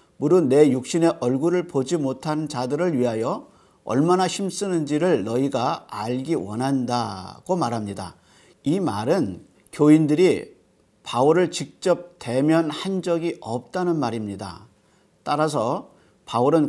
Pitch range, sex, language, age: 120-165 Hz, male, Korean, 40-59